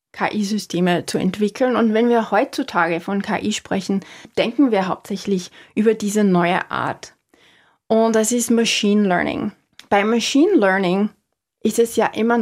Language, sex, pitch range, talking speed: German, female, 190-235 Hz, 140 wpm